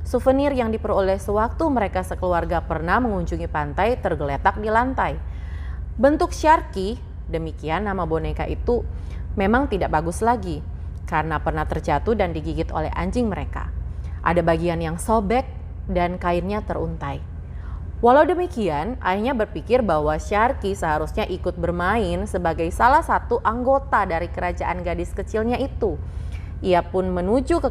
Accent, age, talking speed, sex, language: native, 30-49, 130 wpm, female, Indonesian